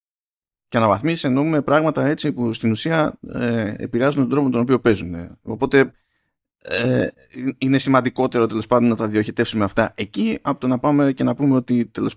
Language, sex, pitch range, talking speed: Greek, male, 110-150 Hz, 175 wpm